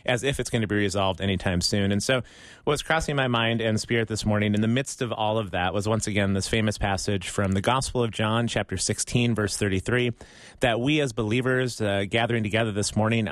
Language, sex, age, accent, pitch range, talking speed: English, male, 30-49, American, 105-125 Hz, 225 wpm